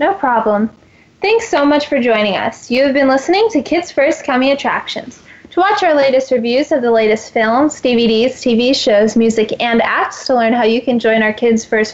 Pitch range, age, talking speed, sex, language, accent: 235-300 Hz, 10-29, 205 wpm, female, English, American